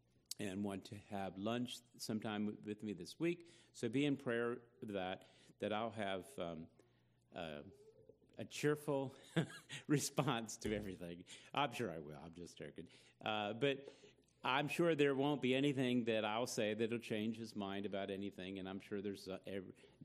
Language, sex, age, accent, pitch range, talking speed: English, male, 50-69, American, 95-120 Hz, 170 wpm